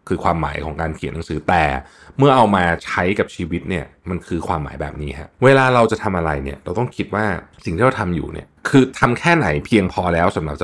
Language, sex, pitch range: Thai, male, 80-110 Hz